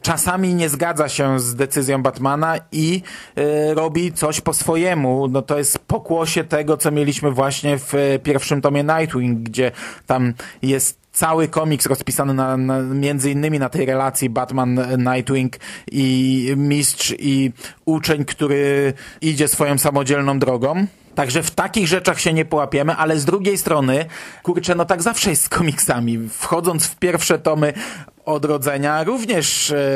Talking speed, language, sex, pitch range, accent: 140 wpm, Polish, male, 135-165 Hz, native